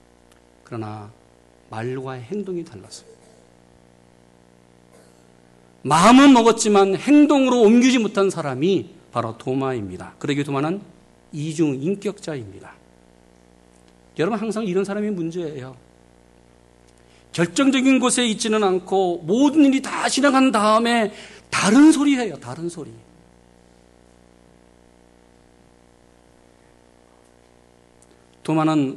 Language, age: Korean, 40-59